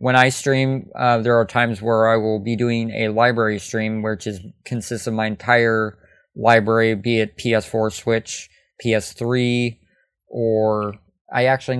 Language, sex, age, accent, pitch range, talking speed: English, male, 20-39, American, 110-120 Hz, 155 wpm